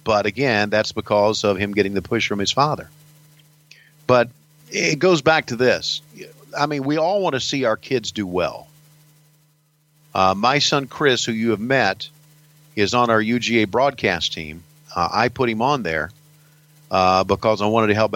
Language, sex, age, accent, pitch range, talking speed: English, male, 50-69, American, 110-150 Hz, 180 wpm